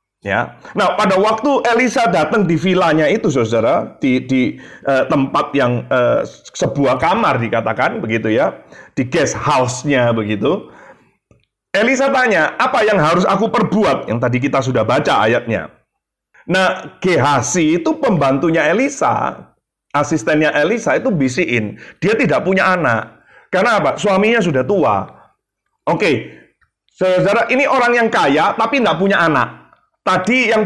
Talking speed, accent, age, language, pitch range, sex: 135 wpm, native, 30-49, Indonesian, 135-215 Hz, male